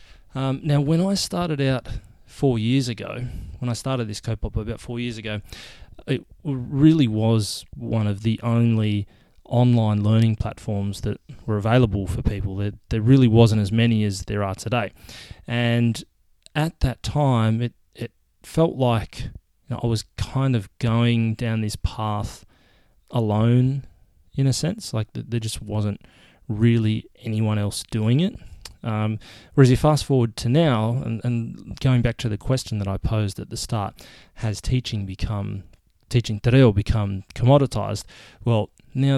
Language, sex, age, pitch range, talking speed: English, male, 20-39, 105-125 Hz, 155 wpm